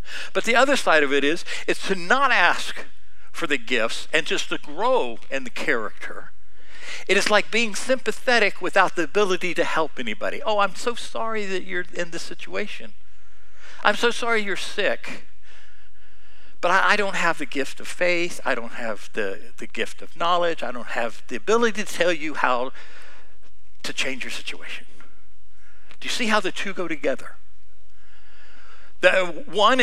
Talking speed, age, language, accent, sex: 170 wpm, 60-79, English, American, male